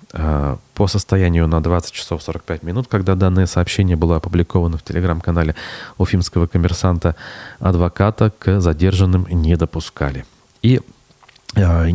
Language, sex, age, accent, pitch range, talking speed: Russian, male, 30-49, native, 80-95 Hz, 115 wpm